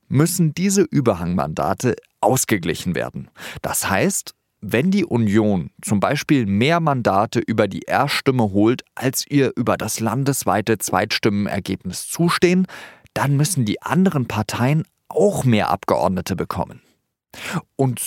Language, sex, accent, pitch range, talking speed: German, male, German, 105-145 Hz, 115 wpm